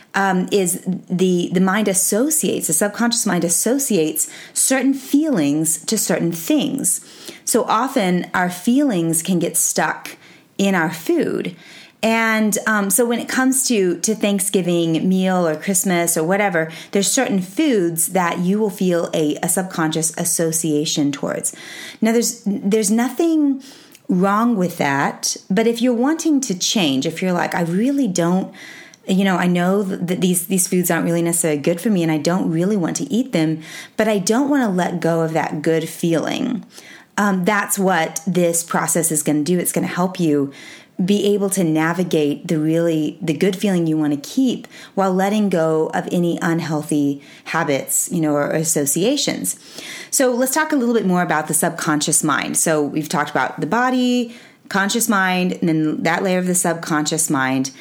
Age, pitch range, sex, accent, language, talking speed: 30-49, 160-220 Hz, female, American, English, 175 wpm